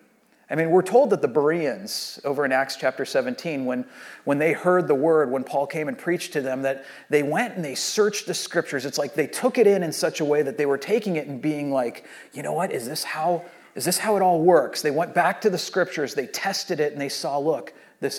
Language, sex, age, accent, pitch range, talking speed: English, male, 40-59, American, 140-210 Hz, 255 wpm